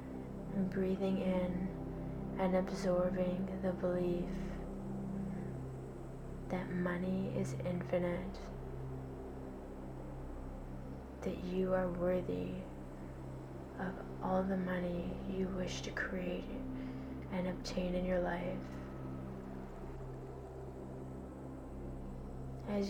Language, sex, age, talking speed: English, female, 20-39, 75 wpm